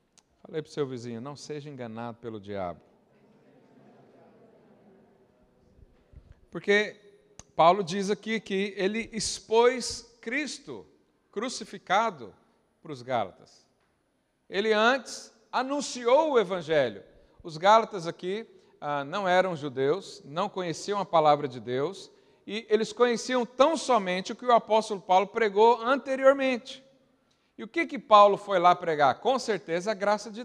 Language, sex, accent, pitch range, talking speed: Portuguese, male, Brazilian, 185-240 Hz, 130 wpm